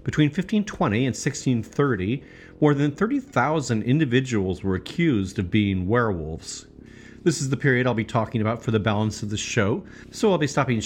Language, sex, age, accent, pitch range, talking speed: English, male, 40-59, American, 100-130 Hz, 170 wpm